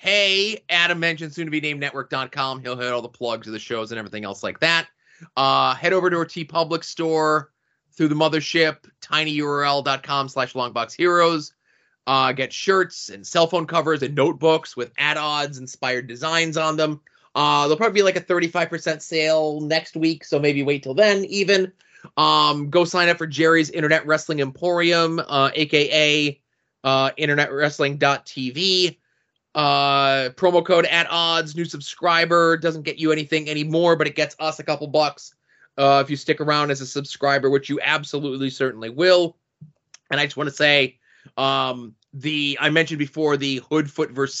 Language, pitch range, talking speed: English, 135-160 Hz, 170 wpm